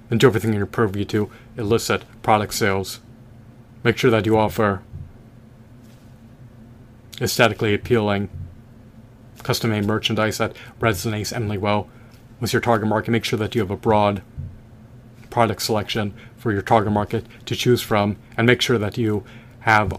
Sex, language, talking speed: male, English, 145 wpm